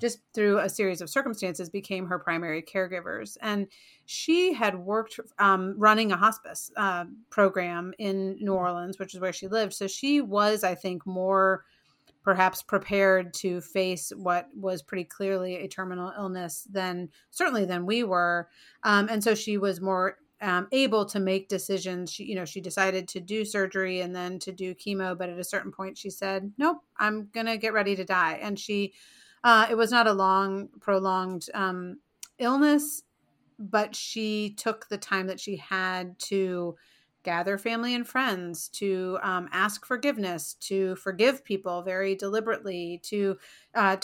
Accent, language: American, English